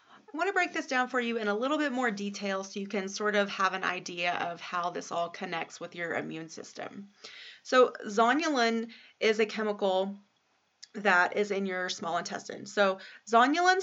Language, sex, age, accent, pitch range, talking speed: English, female, 30-49, American, 185-230 Hz, 185 wpm